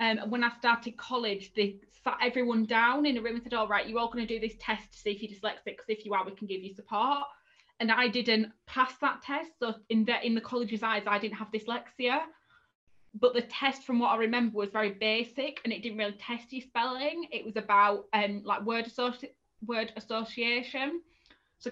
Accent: British